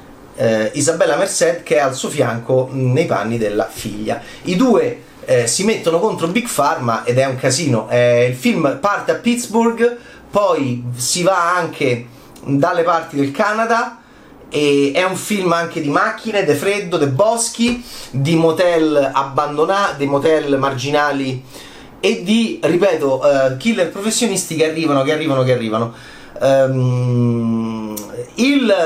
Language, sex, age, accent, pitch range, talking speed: Italian, male, 30-49, native, 125-195 Hz, 140 wpm